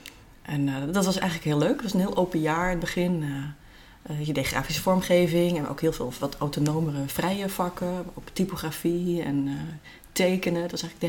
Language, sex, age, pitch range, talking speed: Dutch, female, 30-49, 145-175 Hz, 210 wpm